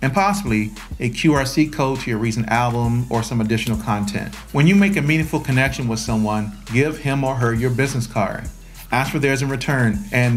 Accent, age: American, 40-59